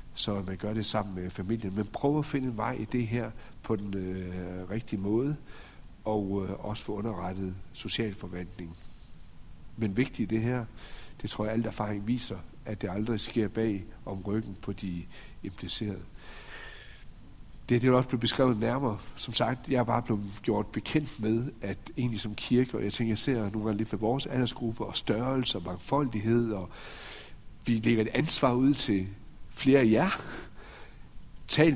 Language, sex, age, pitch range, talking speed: Danish, male, 60-79, 95-120 Hz, 185 wpm